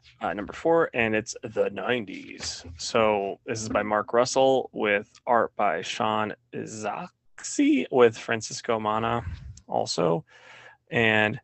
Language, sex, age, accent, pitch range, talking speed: English, male, 20-39, American, 105-125 Hz, 120 wpm